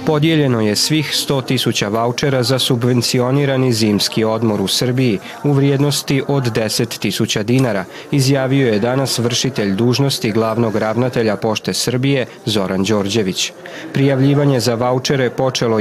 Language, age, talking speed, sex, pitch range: Croatian, 40-59, 120 wpm, male, 115-140 Hz